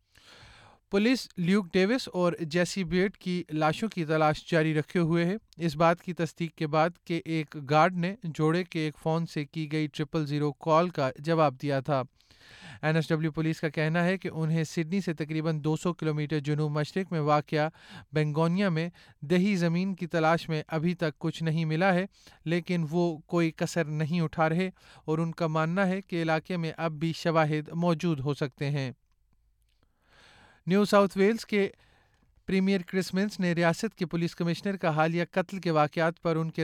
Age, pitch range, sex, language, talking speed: 30-49, 160-185 Hz, male, Urdu, 180 wpm